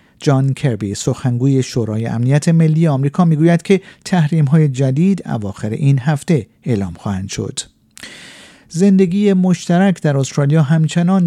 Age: 50-69